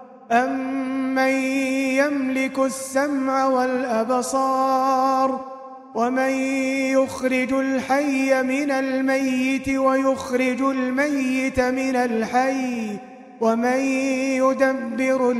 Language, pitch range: Arabic, 245-265 Hz